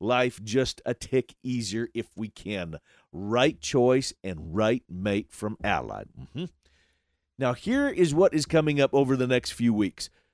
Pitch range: 110-145 Hz